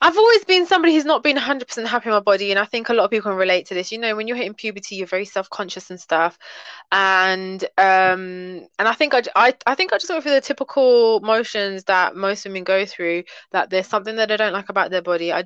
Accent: British